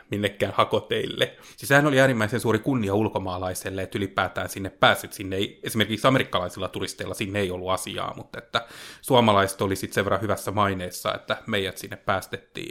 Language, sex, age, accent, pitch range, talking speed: Finnish, male, 30-49, native, 100-125 Hz, 155 wpm